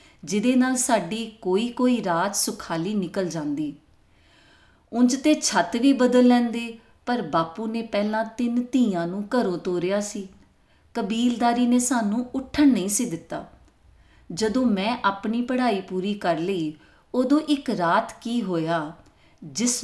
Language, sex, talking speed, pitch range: Punjabi, female, 135 wpm, 175-245 Hz